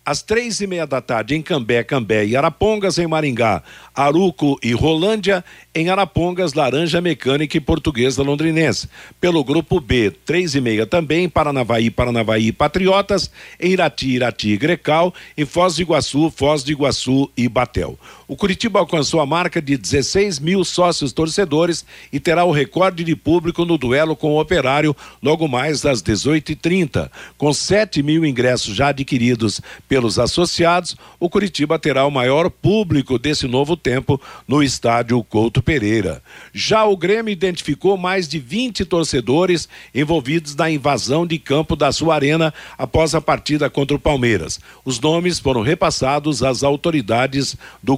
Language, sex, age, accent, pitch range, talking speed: Portuguese, male, 60-79, Brazilian, 130-170 Hz, 155 wpm